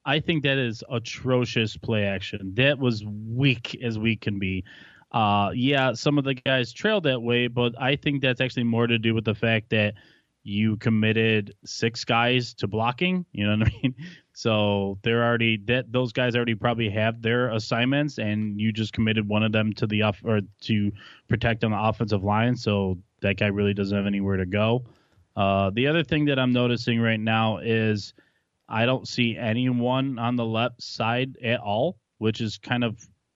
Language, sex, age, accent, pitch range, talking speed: English, male, 20-39, American, 105-125 Hz, 190 wpm